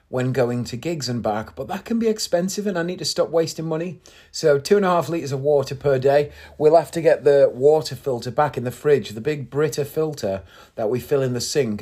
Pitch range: 110-155 Hz